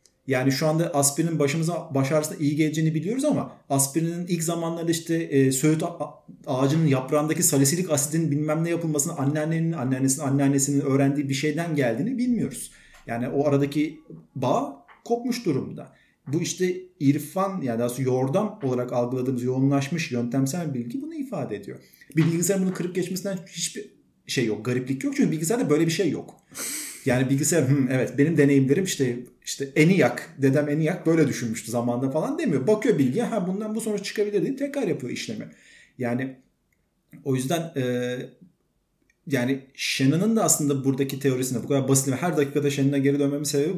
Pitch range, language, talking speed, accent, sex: 135-180 Hz, Turkish, 150 wpm, native, male